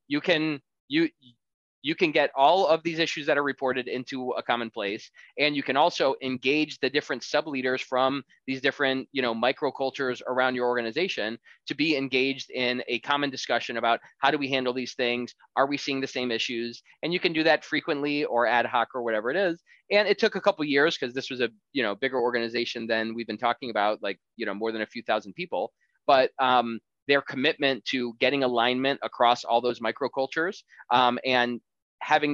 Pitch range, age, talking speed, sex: 120-145 Hz, 20-39, 205 wpm, male